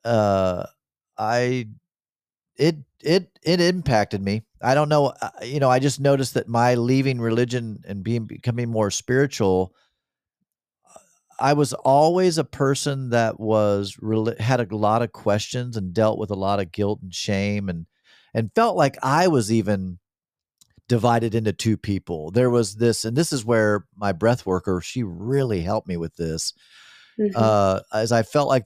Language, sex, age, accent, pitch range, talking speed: English, male, 40-59, American, 95-125 Hz, 165 wpm